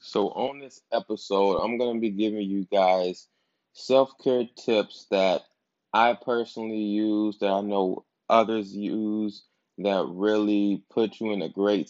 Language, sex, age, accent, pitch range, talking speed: English, male, 20-39, American, 95-105 Hz, 145 wpm